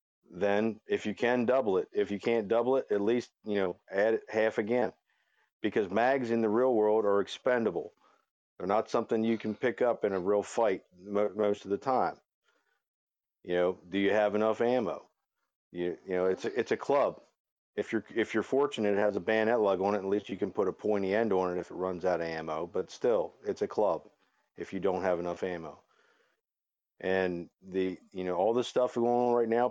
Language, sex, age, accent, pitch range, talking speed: English, male, 50-69, American, 100-120 Hz, 215 wpm